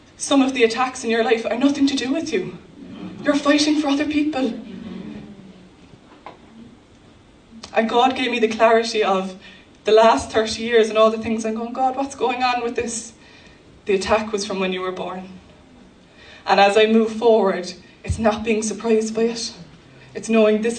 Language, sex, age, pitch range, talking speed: English, female, 20-39, 200-230 Hz, 180 wpm